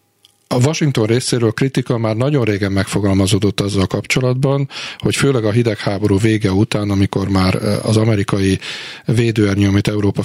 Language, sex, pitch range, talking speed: Hungarian, male, 100-115 Hz, 145 wpm